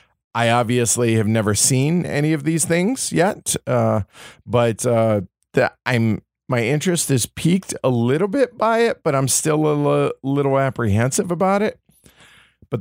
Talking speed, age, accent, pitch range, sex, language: 160 wpm, 40-59, American, 110-140 Hz, male, English